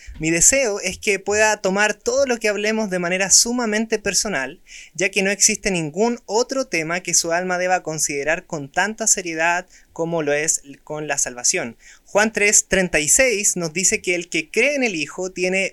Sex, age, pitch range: male, 20-39, 165-215 Hz